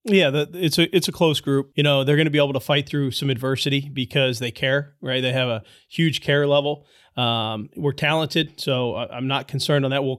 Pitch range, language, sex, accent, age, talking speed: 130-155 Hz, English, male, American, 20-39, 230 wpm